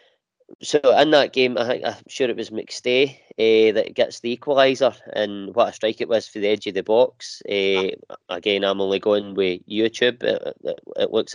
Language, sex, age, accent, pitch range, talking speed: English, male, 20-39, British, 100-145 Hz, 205 wpm